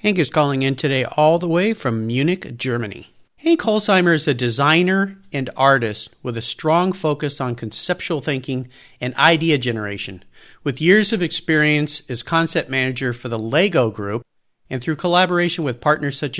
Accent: American